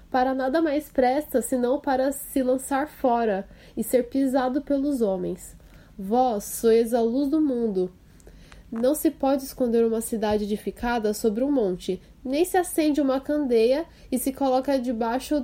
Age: 10-29